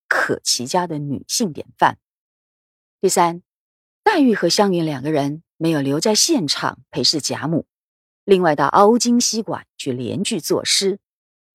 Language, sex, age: Chinese, female, 30-49